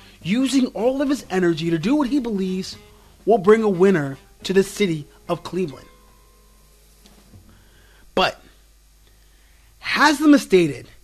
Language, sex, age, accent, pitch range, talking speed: English, male, 30-49, American, 150-210 Hz, 120 wpm